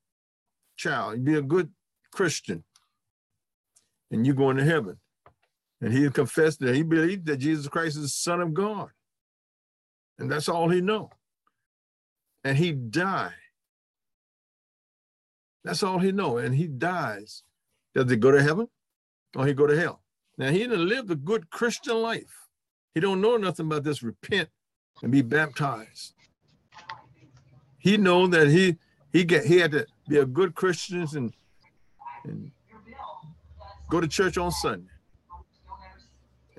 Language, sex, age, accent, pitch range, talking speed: English, male, 60-79, American, 140-185 Hz, 145 wpm